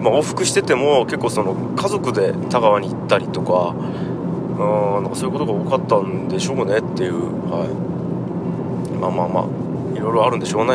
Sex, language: male, Japanese